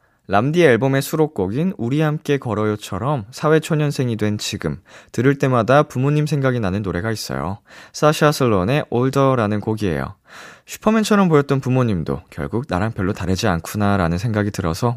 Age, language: 20-39, Korean